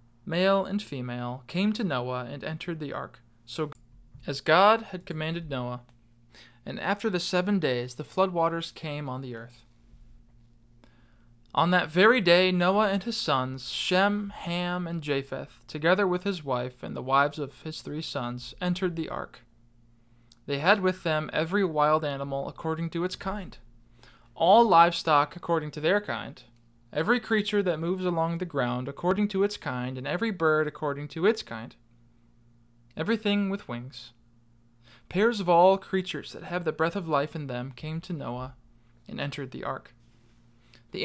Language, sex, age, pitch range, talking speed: English, male, 20-39, 120-180 Hz, 165 wpm